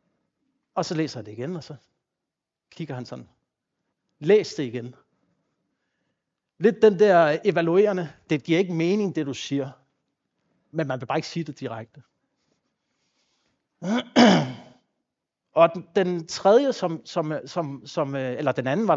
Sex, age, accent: male, 60-79, native